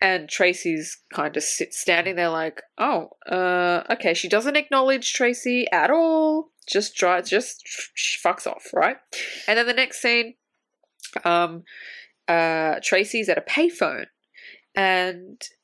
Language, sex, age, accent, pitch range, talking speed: English, female, 20-39, Australian, 185-295 Hz, 130 wpm